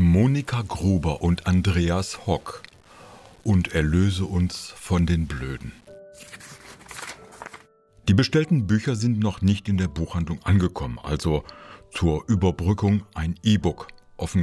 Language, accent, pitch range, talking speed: English, German, 80-105 Hz, 110 wpm